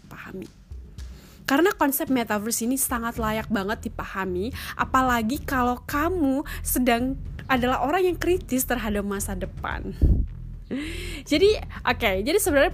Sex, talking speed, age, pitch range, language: female, 120 wpm, 10-29, 190-250 Hz, Indonesian